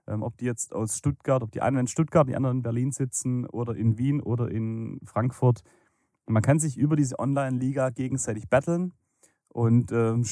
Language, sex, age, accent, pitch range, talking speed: German, male, 30-49, German, 110-135 Hz, 180 wpm